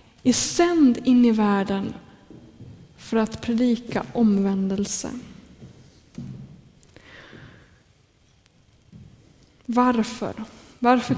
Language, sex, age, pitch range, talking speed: Swedish, female, 20-39, 210-250 Hz, 60 wpm